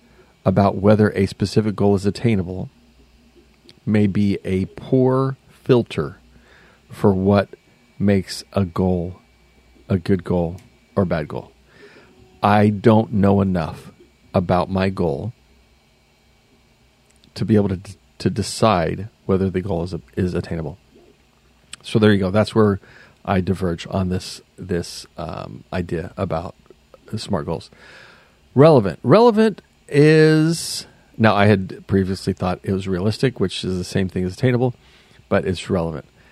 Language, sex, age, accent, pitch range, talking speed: English, male, 40-59, American, 90-110 Hz, 135 wpm